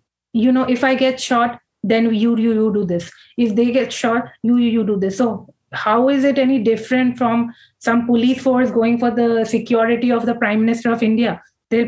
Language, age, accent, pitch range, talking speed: English, 30-49, Indian, 215-250 Hz, 210 wpm